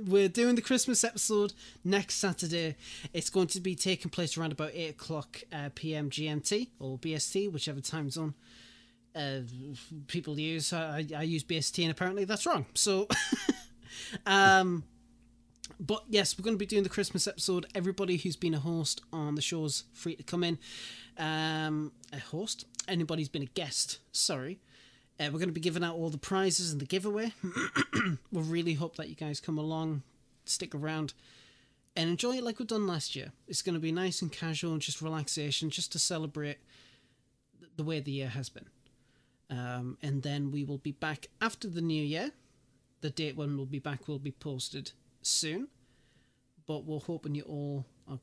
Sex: male